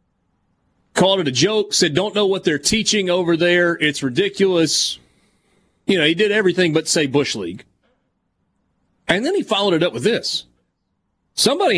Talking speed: 165 wpm